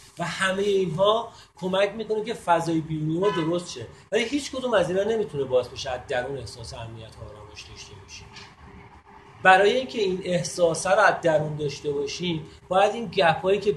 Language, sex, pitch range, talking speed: Persian, male, 140-205 Hz, 170 wpm